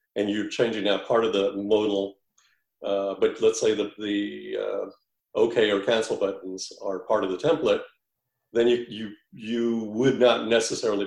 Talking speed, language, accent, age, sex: 175 wpm, English, American, 50-69, male